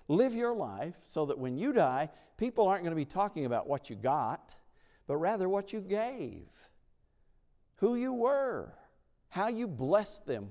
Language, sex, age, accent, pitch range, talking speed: English, male, 60-79, American, 125-200 Hz, 170 wpm